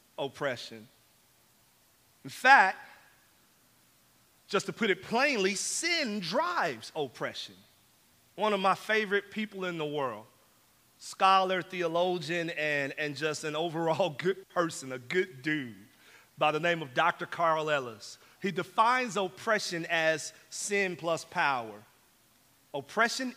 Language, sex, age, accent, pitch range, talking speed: English, male, 40-59, American, 170-240 Hz, 120 wpm